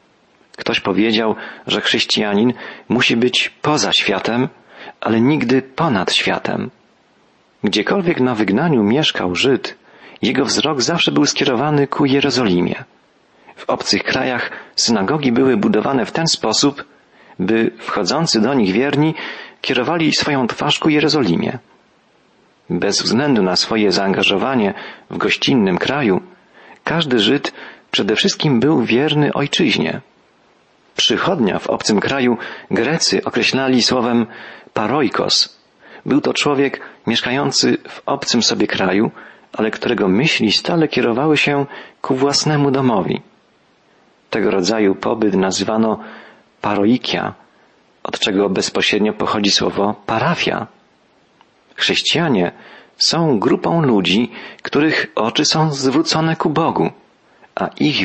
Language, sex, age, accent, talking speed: Polish, male, 40-59, native, 110 wpm